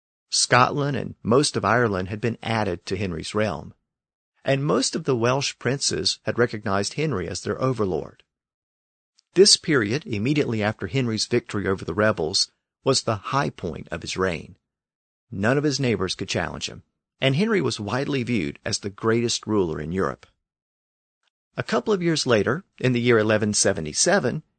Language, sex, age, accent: English, male, 50-69, American